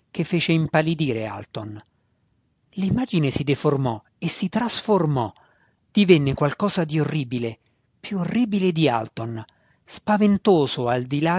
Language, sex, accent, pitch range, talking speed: Italian, male, native, 130-165 Hz, 115 wpm